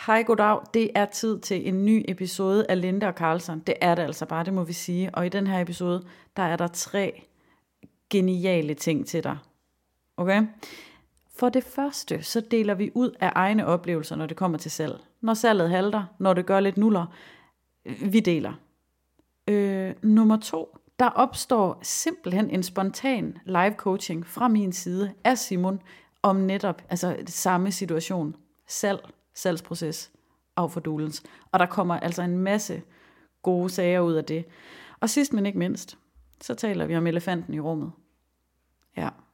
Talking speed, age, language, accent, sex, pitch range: 165 wpm, 30-49, Danish, native, female, 170-215 Hz